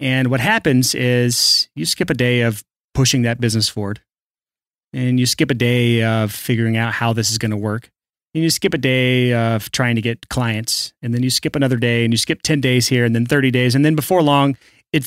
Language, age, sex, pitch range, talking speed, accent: English, 30-49, male, 125-175 Hz, 230 wpm, American